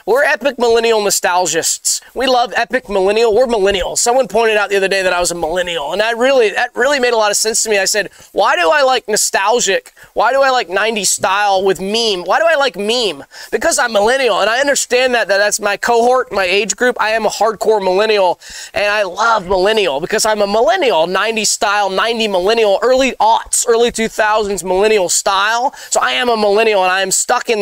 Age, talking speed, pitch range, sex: 20-39, 215 wpm, 195-250 Hz, male